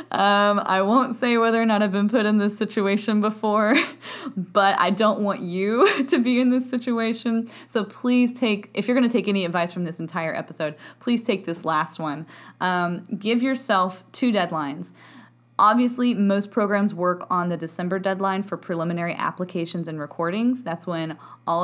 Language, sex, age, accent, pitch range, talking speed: English, female, 20-39, American, 170-225 Hz, 175 wpm